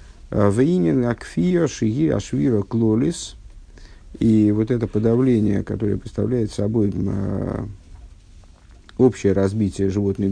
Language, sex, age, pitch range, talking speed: Russian, male, 50-69, 100-130 Hz, 80 wpm